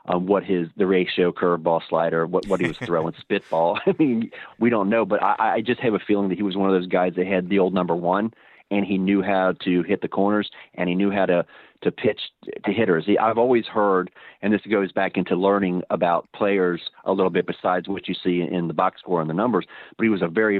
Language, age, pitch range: English, 30-49, 90-105 Hz